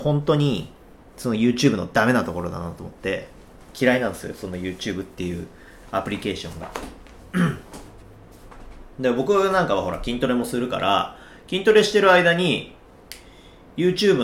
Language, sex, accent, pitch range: Japanese, male, native, 90-150 Hz